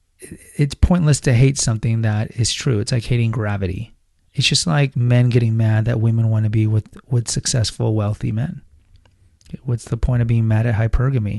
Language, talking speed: English, 190 wpm